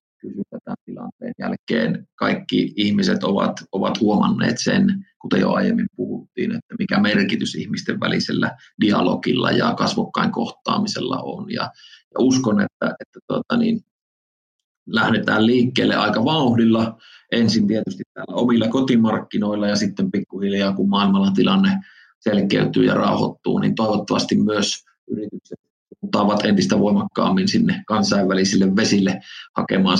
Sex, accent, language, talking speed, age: male, native, Finnish, 125 wpm, 30-49